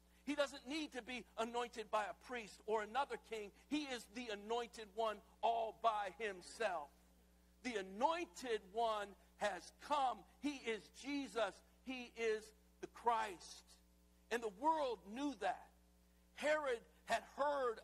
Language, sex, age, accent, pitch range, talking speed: English, male, 60-79, American, 200-260 Hz, 135 wpm